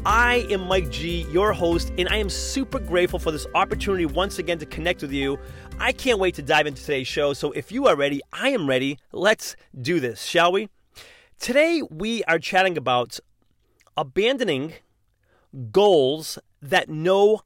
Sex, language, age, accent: male, English, 30-49, American